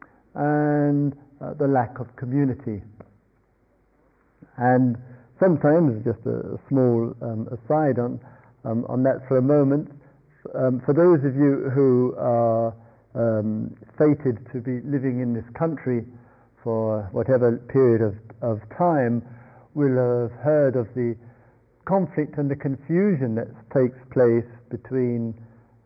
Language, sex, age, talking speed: English, male, 50-69, 130 wpm